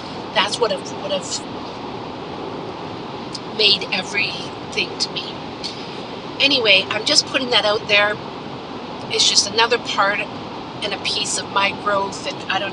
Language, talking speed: English, 125 wpm